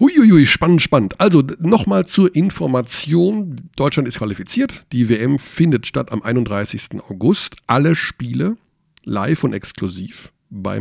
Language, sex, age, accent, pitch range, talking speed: German, male, 50-69, German, 115-170 Hz, 135 wpm